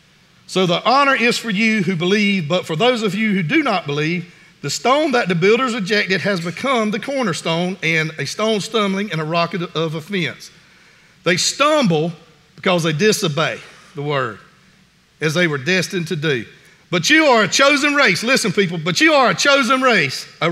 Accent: American